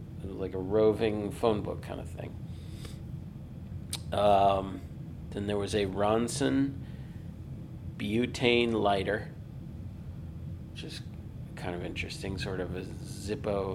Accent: American